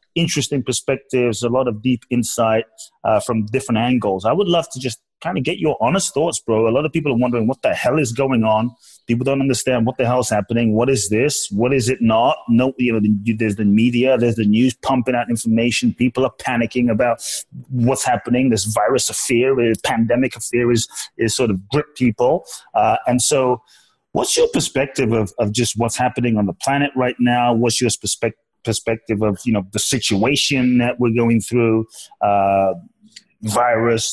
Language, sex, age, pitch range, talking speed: English, male, 30-49, 115-145 Hz, 195 wpm